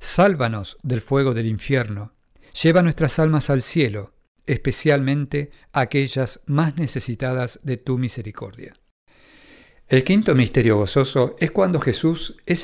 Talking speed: 120 wpm